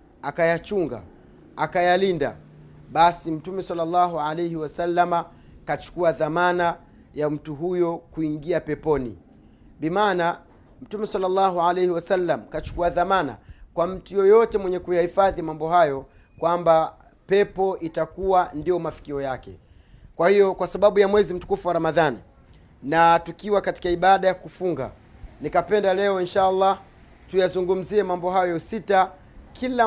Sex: male